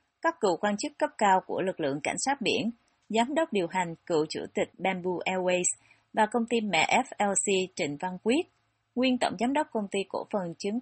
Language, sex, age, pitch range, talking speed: Vietnamese, female, 30-49, 180-240 Hz, 210 wpm